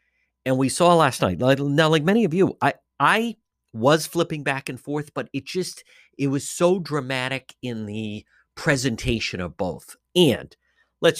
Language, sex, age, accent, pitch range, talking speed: English, male, 50-69, American, 120-175 Hz, 165 wpm